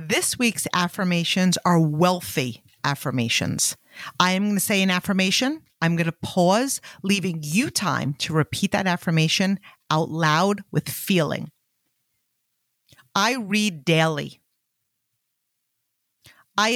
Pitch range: 125-180 Hz